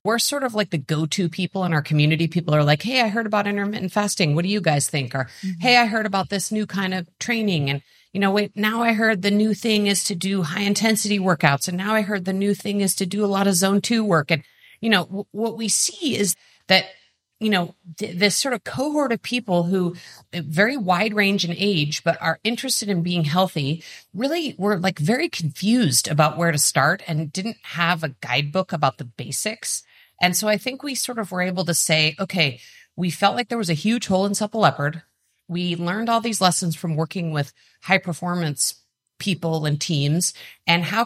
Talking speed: 215 wpm